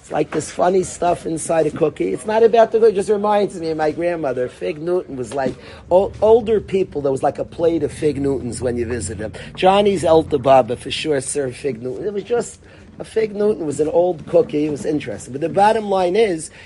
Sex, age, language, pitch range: male, 40-59, English, 155-220 Hz